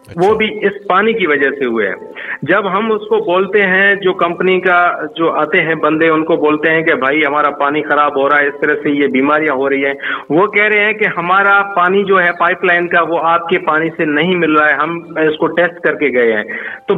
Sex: male